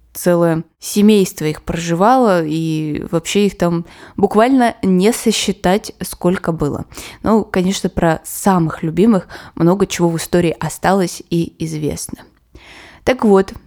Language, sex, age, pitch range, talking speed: Russian, female, 20-39, 170-215 Hz, 120 wpm